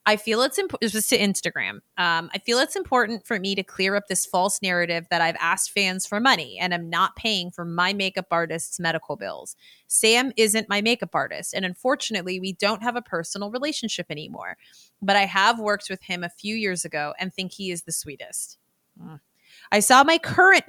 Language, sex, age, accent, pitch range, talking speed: English, female, 30-49, American, 175-220 Hz, 200 wpm